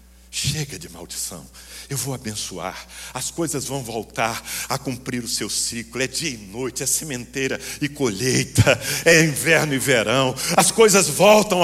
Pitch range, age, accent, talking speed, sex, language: 75-120 Hz, 60-79, Brazilian, 155 wpm, male, English